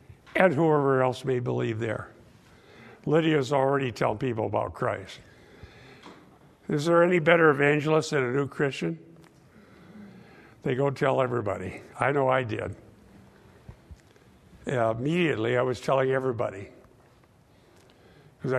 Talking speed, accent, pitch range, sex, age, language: 115 wpm, American, 125-155 Hz, male, 60-79, English